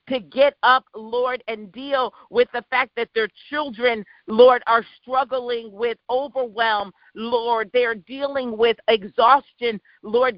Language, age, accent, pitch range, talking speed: English, 40-59, American, 225-260 Hz, 135 wpm